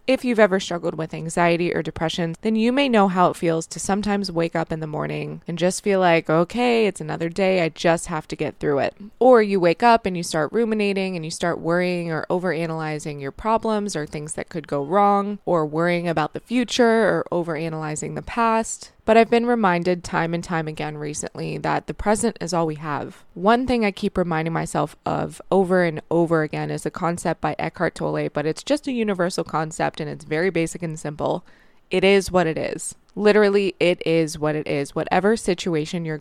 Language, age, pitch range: English, 20-39, 160-200 Hz